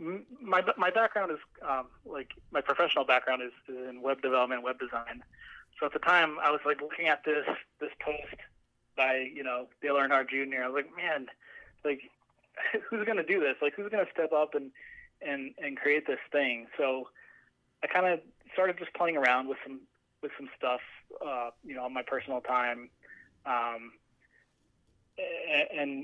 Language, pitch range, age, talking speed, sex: English, 125-150 Hz, 20-39, 180 wpm, male